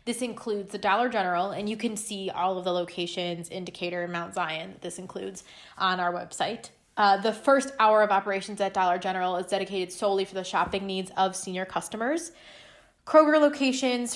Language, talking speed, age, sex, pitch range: English, 185 wpm, 20-39, female, 195-230 Hz